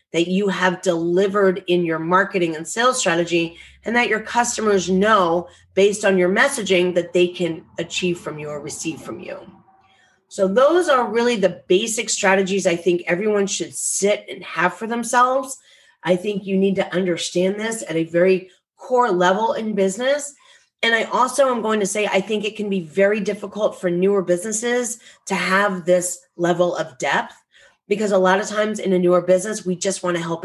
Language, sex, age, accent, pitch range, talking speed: English, female, 30-49, American, 175-210 Hz, 190 wpm